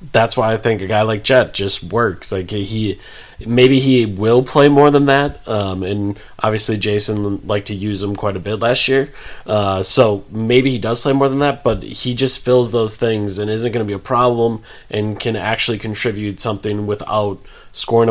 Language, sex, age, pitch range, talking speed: English, male, 20-39, 105-125 Hz, 200 wpm